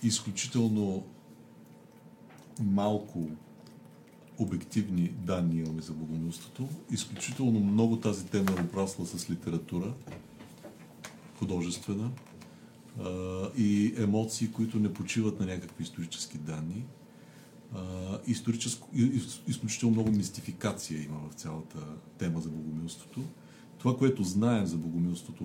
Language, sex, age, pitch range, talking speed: Bulgarian, male, 50-69, 85-110 Hz, 90 wpm